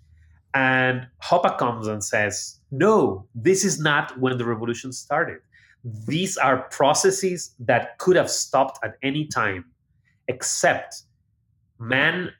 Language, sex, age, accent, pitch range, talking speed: English, male, 30-49, Mexican, 110-145 Hz, 120 wpm